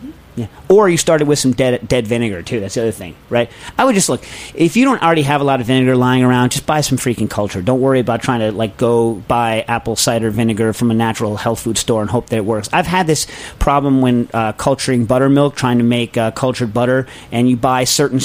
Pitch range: 120-150 Hz